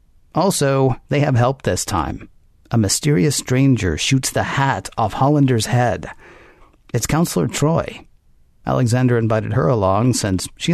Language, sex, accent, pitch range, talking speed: English, male, American, 110-135 Hz, 135 wpm